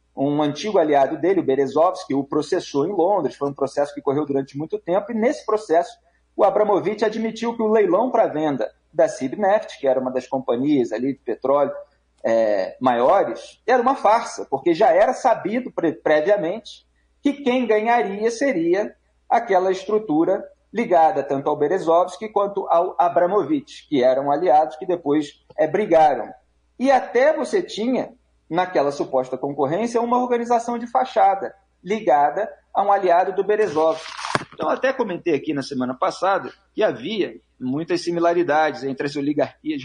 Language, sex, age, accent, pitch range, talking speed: Portuguese, male, 40-59, Brazilian, 145-235 Hz, 150 wpm